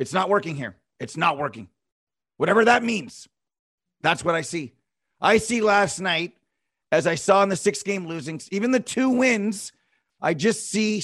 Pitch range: 180-220 Hz